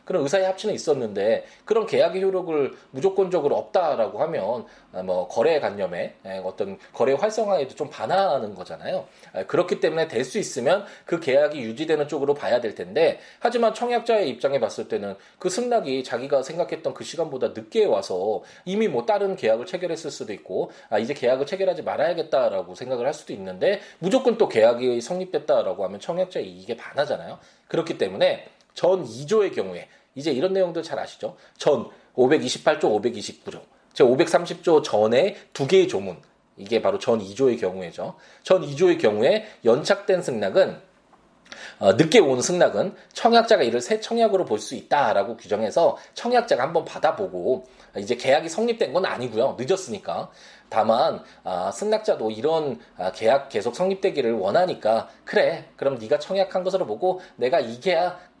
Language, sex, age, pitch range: Korean, male, 20-39, 145-225 Hz